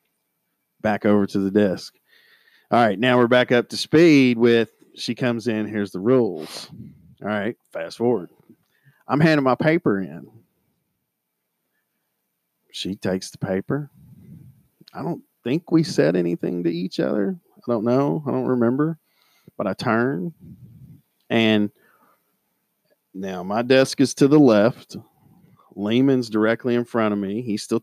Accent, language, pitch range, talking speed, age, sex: American, English, 105-135 Hz, 145 wpm, 40-59, male